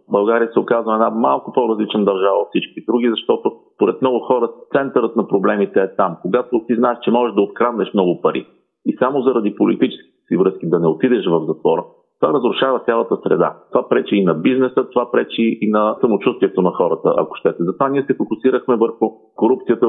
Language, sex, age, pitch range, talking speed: Bulgarian, male, 40-59, 105-135 Hz, 195 wpm